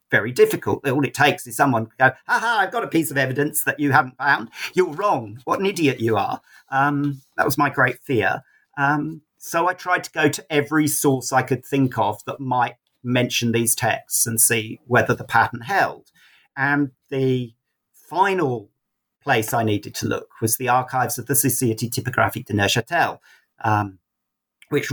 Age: 50-69